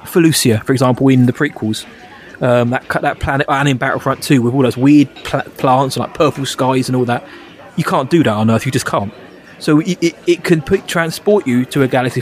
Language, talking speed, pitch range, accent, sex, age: English, 230 wpm, 130-155 Hz, British, male, 20-39